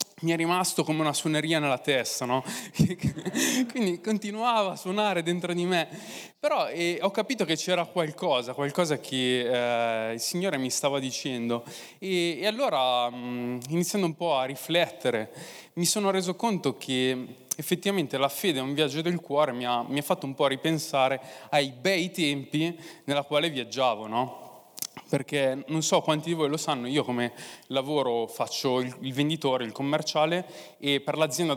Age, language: 20-39, Italian